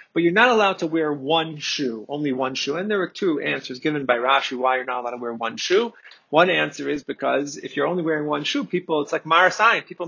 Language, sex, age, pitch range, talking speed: English, male, 30-49, 140-200 Hz, 250 wpm